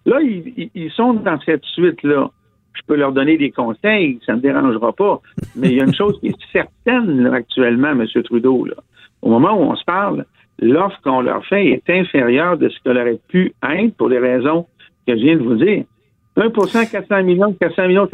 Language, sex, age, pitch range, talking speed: French, male, 60-79, 140-225 Hz, 210 wpm